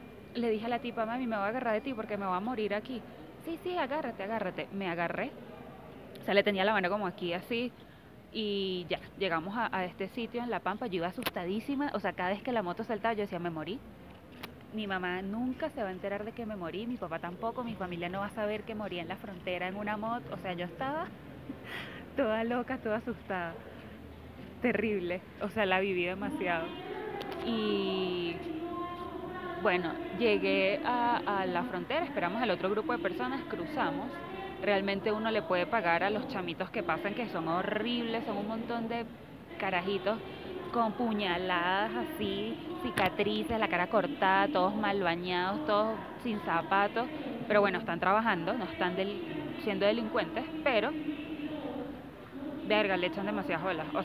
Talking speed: 180 wpm